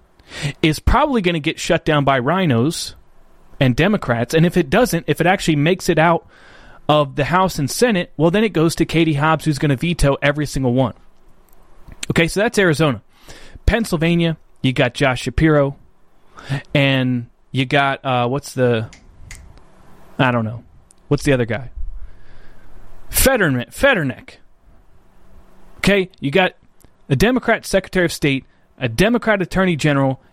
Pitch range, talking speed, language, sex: 135-185 Hz, 150 wpm, English, male